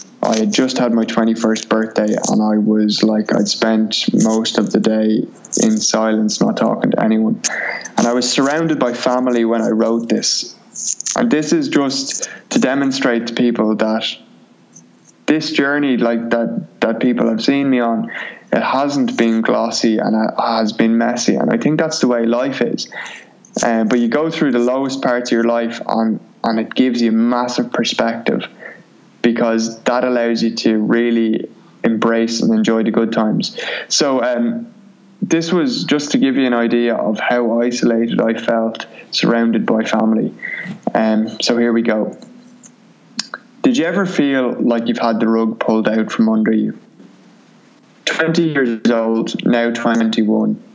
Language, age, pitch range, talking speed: English, 20-39, 110-135 Hz, 165 wpm